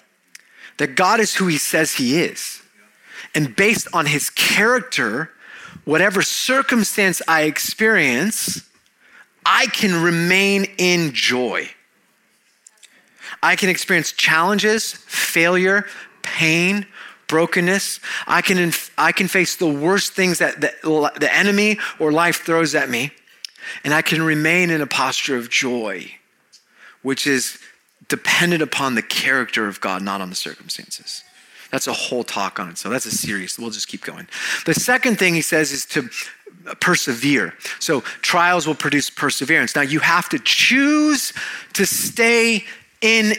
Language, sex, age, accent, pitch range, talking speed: English, male, 30-49, American, 155-200 Hz, 140 wpm